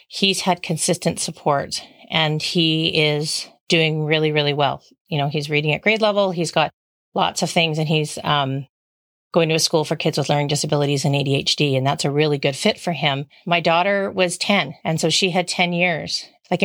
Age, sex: 40-59, female